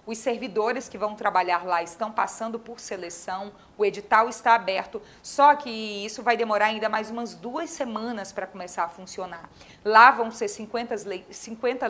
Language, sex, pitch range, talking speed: Portuguese, female, 200-240 Hz, 165 wpm